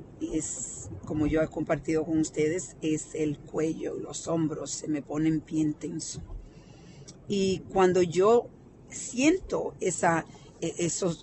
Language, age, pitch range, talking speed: Spanish, 40-59, 150-180 Hz, 125 wpm